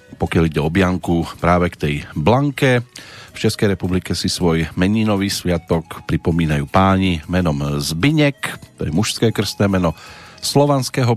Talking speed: 130 wpm